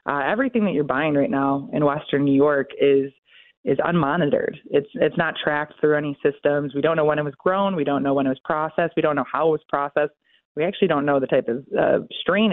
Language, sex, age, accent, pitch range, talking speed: English, female, 20-39, American, 145-170 Hz, 245 wpm